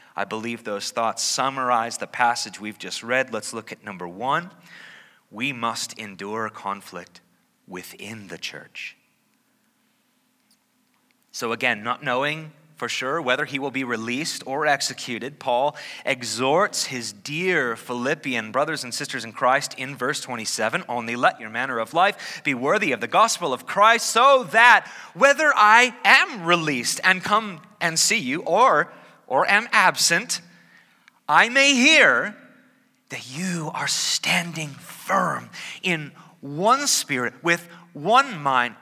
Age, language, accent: 30-49, English, American